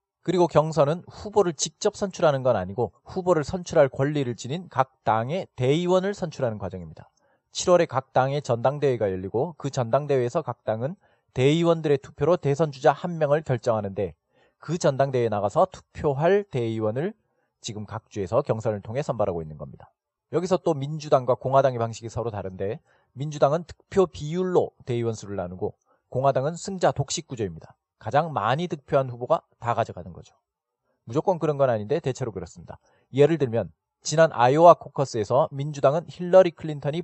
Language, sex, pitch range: Korean, male, 120-165 Hz